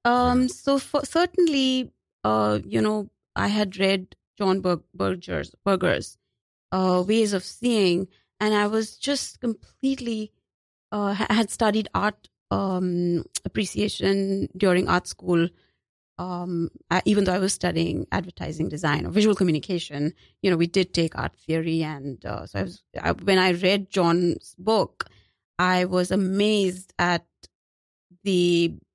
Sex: female